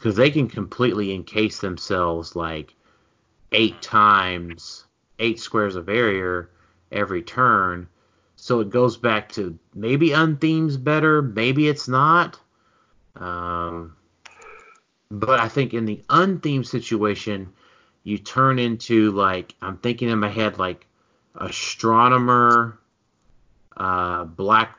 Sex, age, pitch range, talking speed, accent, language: male, 30-49, 95-120 Hz, 115 wpm, American, English